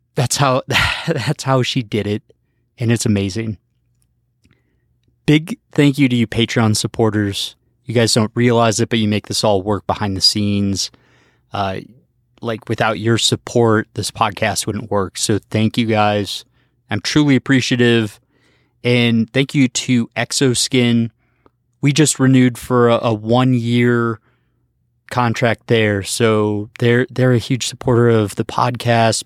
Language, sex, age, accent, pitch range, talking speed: English, male, 20-39, American, 110-125 Hz, 145 wpm